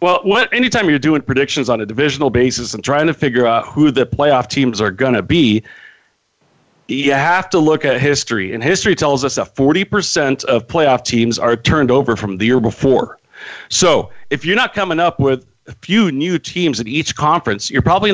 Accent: American